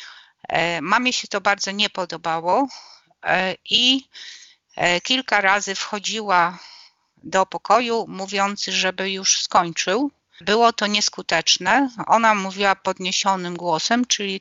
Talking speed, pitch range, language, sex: 100 wpm, 180-220 Hz, Polish, female